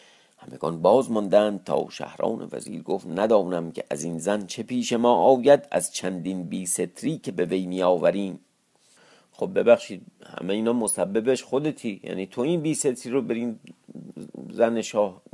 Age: 50-69